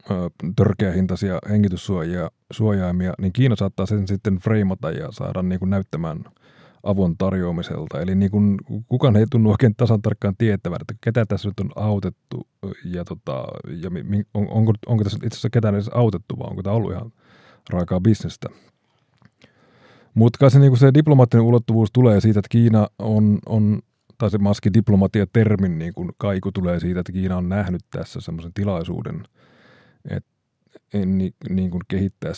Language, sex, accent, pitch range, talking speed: Finnish, male, native, 95-115 Hz, 150 wpm